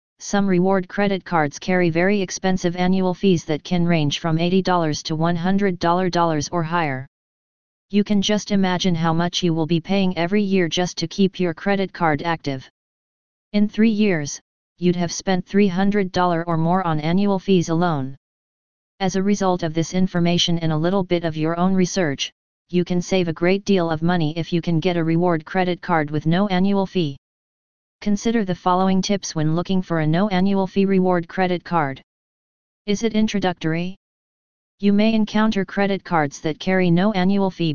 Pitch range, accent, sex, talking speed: 165-195 Hz, American, female, 175 wpm